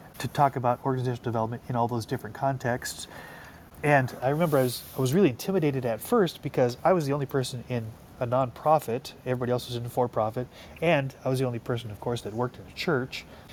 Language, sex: English, male